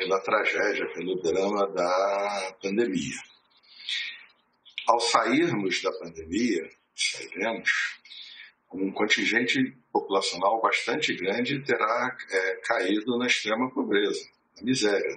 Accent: Brazilian